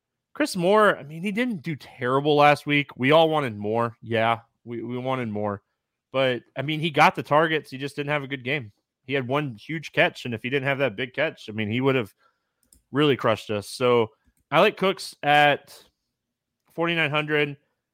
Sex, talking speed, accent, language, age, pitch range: male, 200 wpm, American, English, 20-39, 120-145 Hz